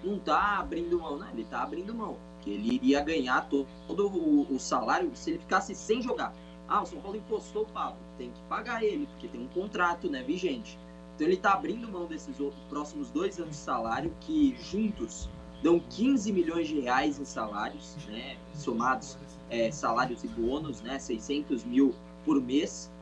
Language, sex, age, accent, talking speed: English, male, 20-39, Brazilian, 190 wpm